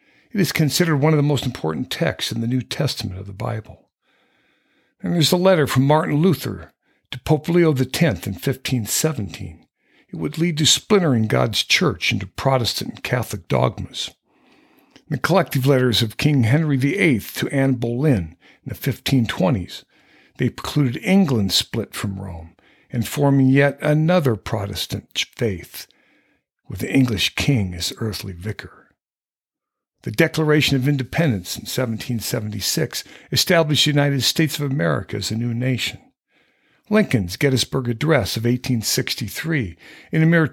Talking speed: 145 wpm